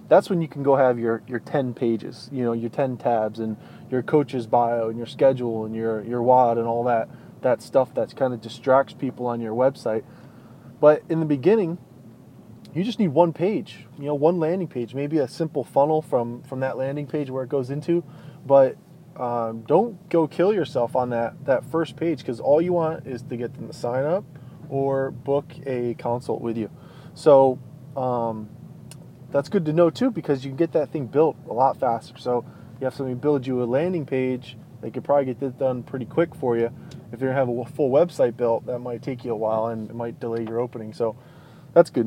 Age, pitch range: 20-39, 120-155 Hz